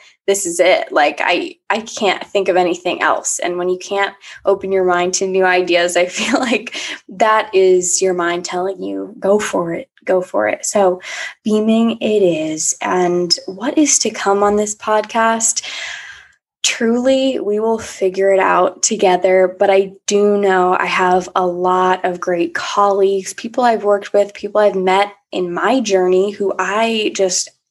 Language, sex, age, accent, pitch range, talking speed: English, female, 10-29, American, 185-215 Hz, 170 wpm